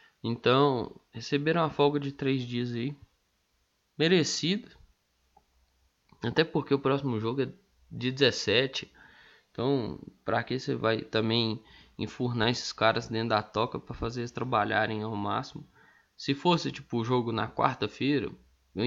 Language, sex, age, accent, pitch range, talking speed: Portuguese, male, 20-39, Brazilian, 115-160 Hz, 135 wpm